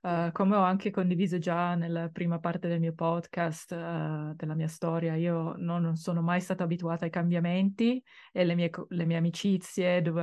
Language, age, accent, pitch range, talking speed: English, 20-39, Italian, 160-180 Hz, 180 wpm